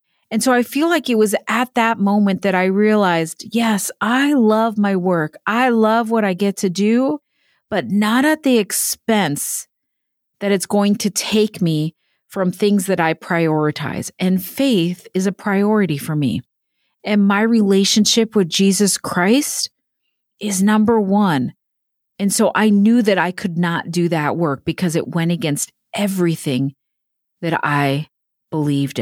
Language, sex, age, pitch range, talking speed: English, female, 40-59, 180-245 Hz, 155 wpm